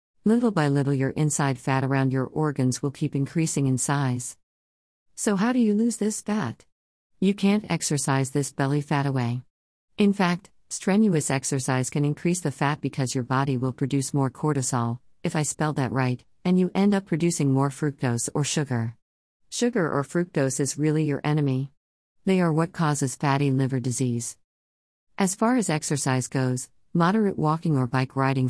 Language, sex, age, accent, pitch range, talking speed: English, female, 50-69, American, 130-160 Hz, 170 wpm